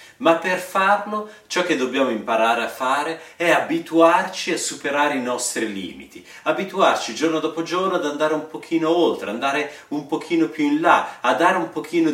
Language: Italian